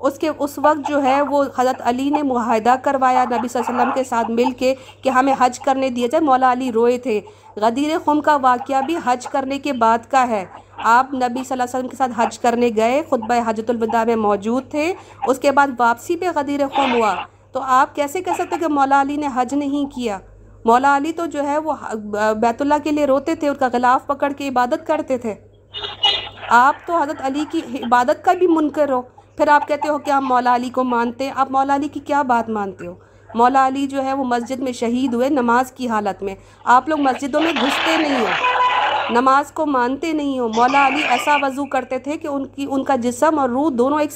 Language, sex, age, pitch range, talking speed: Urdu, female, 50-69, 245-290 Hz, 230 wpm